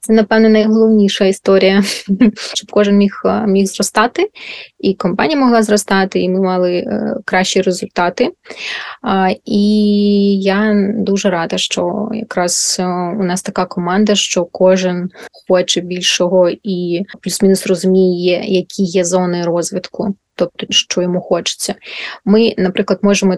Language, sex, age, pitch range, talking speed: Ukrainian, female, 20-39, 185-210 Hz, 120 wpm